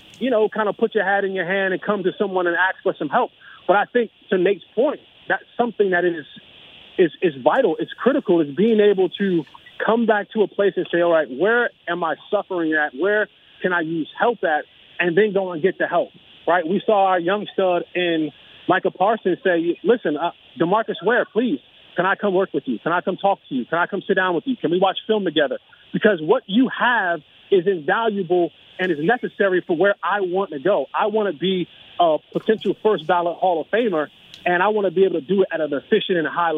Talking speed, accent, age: 240 wpm, American, 30-49